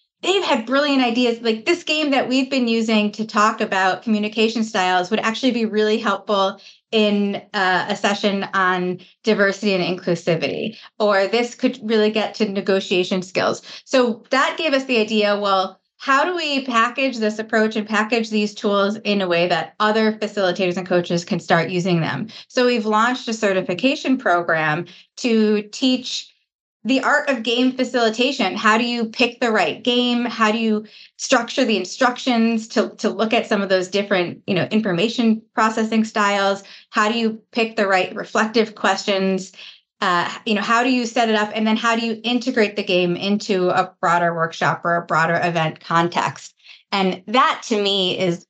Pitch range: 185-230 Hz